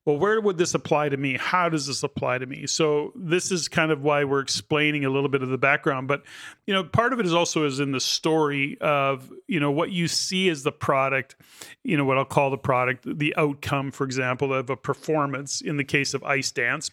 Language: English